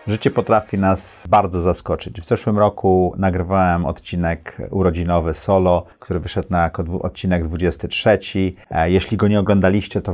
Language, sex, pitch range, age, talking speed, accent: Polish, male, 85-100 Hz, 30-49, 130 wpm, native